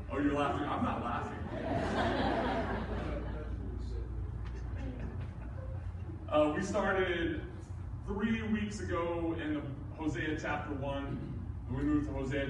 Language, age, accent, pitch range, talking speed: English, 30-49, American, 100-130 Hz, 105 wpm